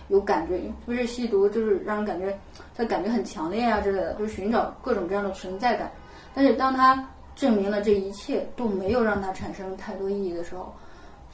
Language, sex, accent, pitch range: Chinese, female, native, 195-240 Hz